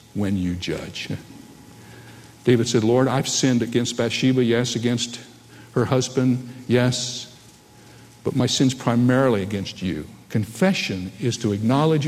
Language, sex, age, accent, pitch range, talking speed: English, male, 60-79, American, 120-170 Hz, 125 wpm